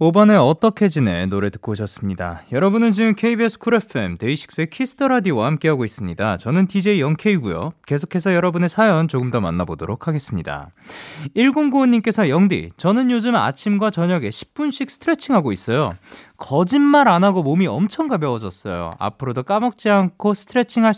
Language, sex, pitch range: Korean, male, 145-220 Hz